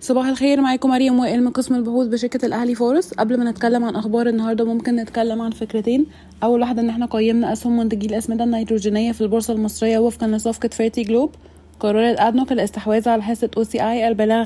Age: 20-39